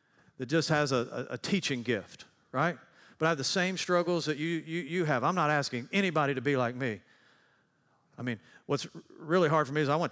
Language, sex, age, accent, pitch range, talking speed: English, male, 40-59, American, 130-170 Hz, 220 wpm